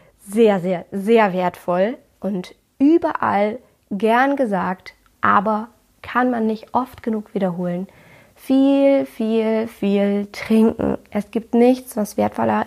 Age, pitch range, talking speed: 20-39, 190-225 Hz, 115 wpm